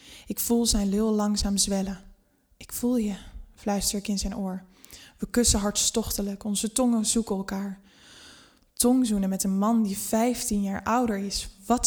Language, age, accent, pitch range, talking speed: Dutch, 10-29, Dutch, 200-225 Hz, 155 wpm